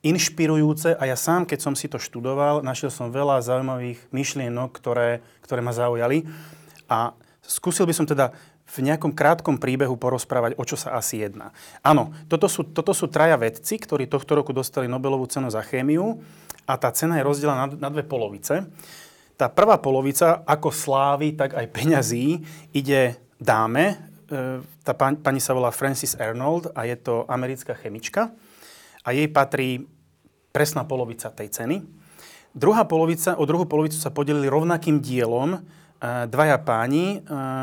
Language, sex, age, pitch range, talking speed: Slovak, male, 30-49, 130-160 Hz, 155 wpm